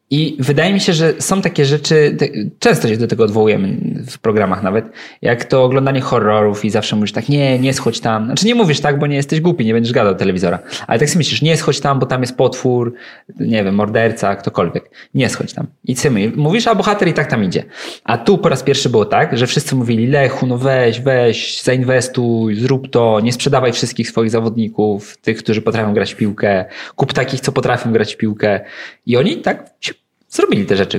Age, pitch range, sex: 20-39, 110-155 Hz, male